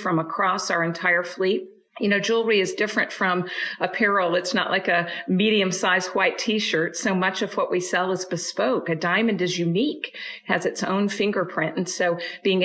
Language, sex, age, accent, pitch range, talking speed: English, female, 50-69, American, 175-205 Hz, 190 wpm